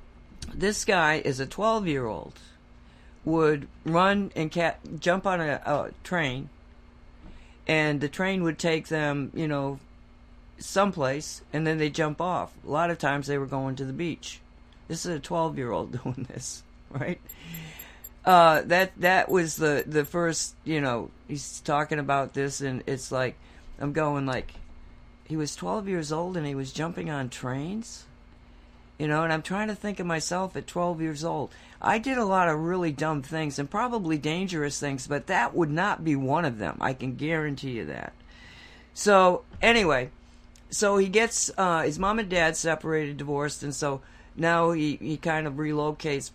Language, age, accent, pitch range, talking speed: English, 50-69, American, 130-170 Hz, 170 wpm